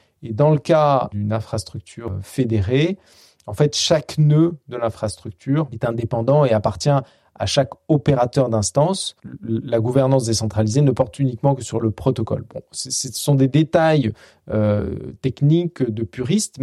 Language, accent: French, French